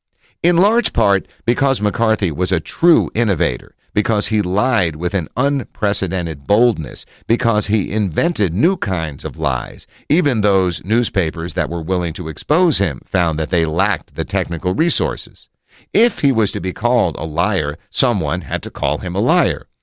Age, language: 50-69, English